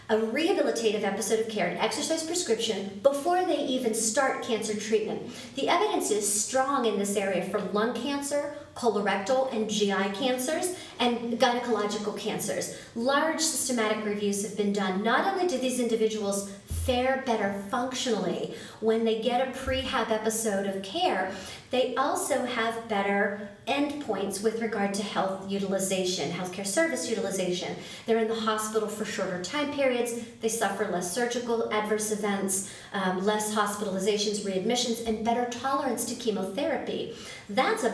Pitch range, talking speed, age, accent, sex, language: 200-260 Hz, 145 wpm, 40-59, American, female, English